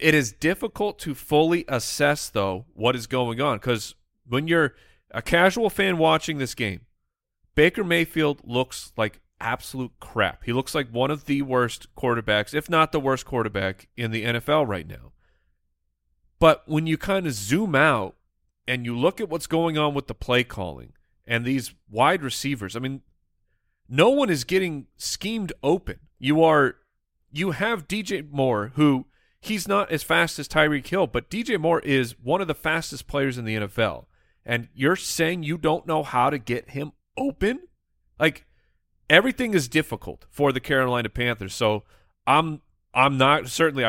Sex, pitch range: male, 110-155 Hz